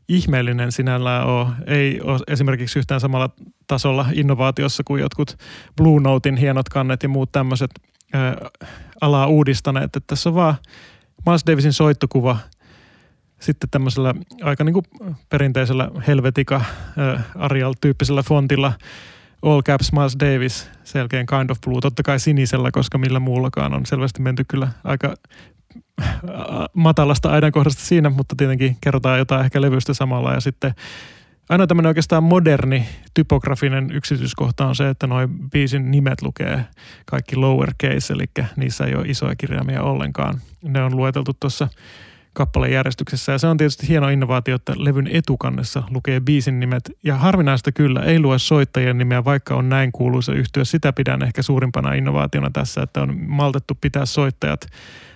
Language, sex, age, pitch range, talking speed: Finnish, male, 30-49, 130-145 Hz, 145 wpm